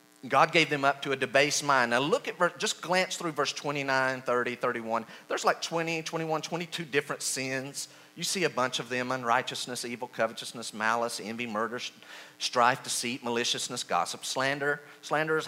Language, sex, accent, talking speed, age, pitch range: English, male, American, 165 wpm, 40-59, 100-155 Hz